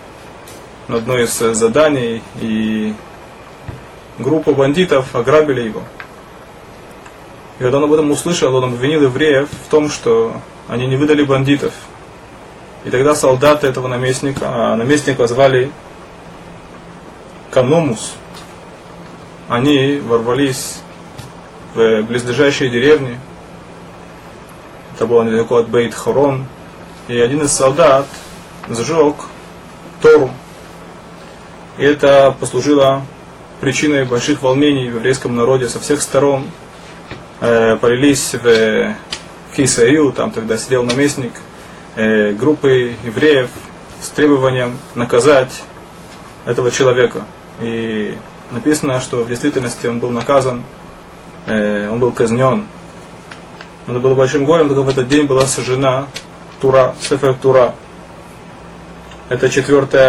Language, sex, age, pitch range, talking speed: Russian, male, 20-39, 120-145 Hz, 105 wpm